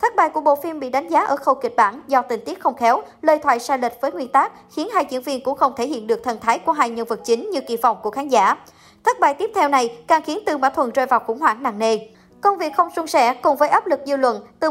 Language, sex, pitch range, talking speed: Vietnamese, male, 245-320 Hz, 300 wpm